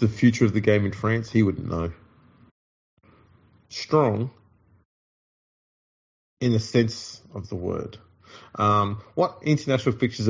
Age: 30-49